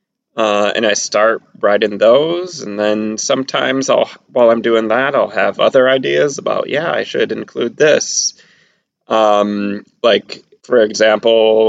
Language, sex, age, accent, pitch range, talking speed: English, male, 20-39, American, 105-130 Hz, 140 wpm